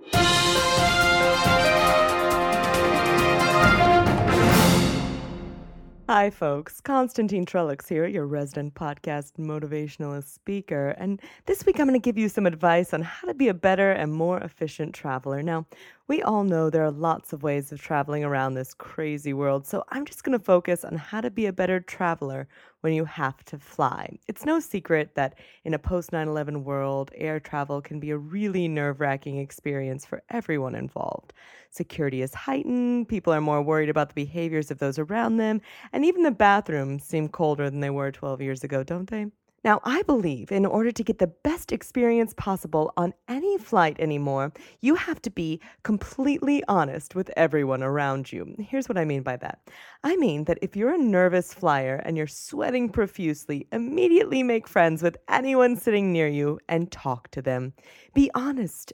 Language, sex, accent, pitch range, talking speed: English, female, American, 145-215 Hz, 170 wpm